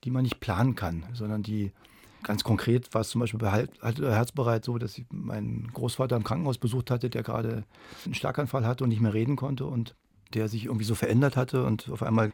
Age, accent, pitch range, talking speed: 40-59, German, 115-130 Hz, 225 wpm